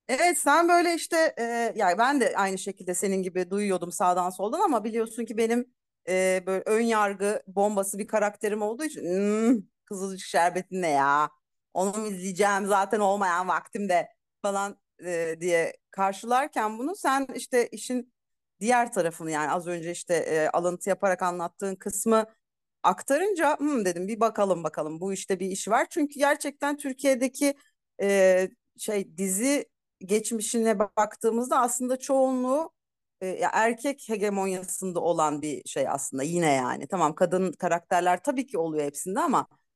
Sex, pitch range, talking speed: female, 185-260 Hz, 145 wpm